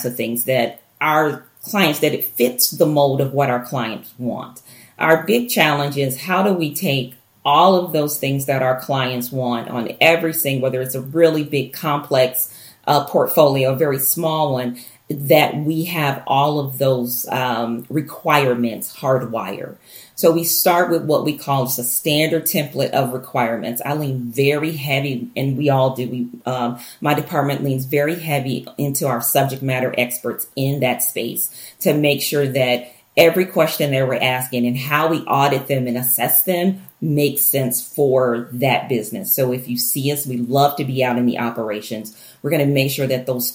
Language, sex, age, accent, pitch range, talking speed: English, female, 40-59, American, 125-150 Hz, 180 wpm